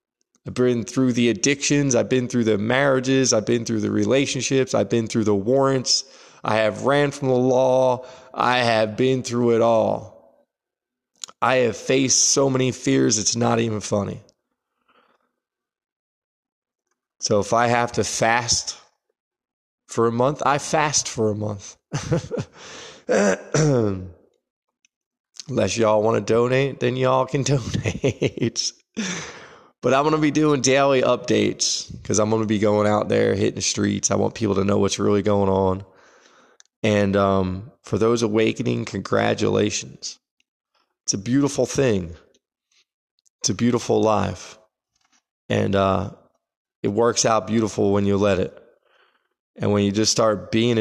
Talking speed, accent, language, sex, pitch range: 145 wpm, American, English, male, 105-130 Hz